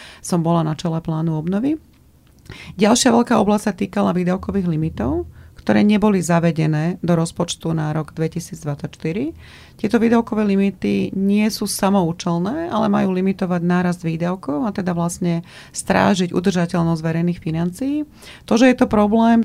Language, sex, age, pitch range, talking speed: Slovak, female, 30-49, 165-195 Hz, 135 wpm